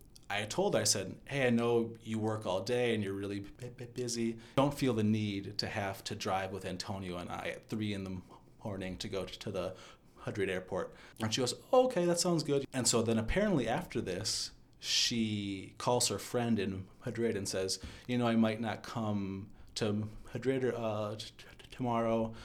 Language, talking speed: English, 185 wpm